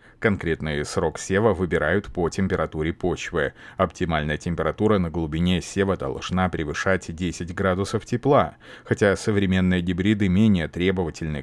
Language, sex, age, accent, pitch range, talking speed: Russian, male, 30-49, native, 85-110 Hz, 115 wpm